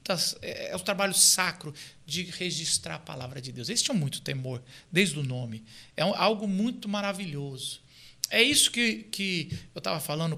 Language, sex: Portuguese, male